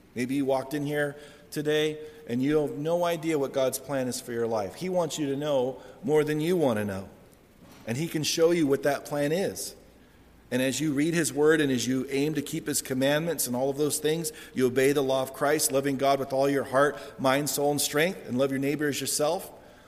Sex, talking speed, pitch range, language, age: male, 240 wpm, 115-145 Hz, English, 40-59